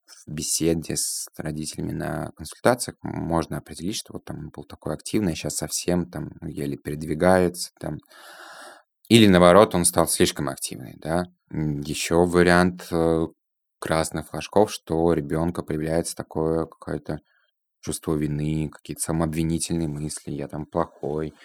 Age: 20-39